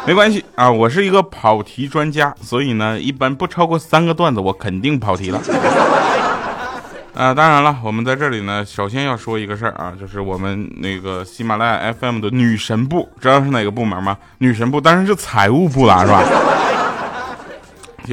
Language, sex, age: Chinese, male, 20-39